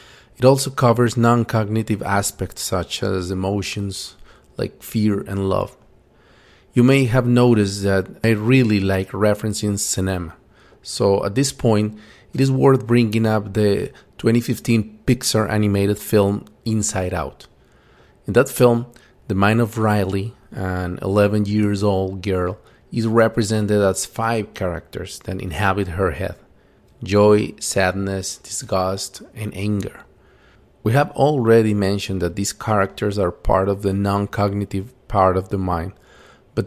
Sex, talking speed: male, 130 wpm